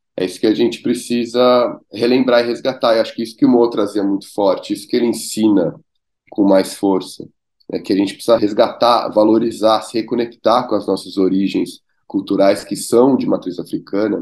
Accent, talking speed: Brazilian, 190 wpm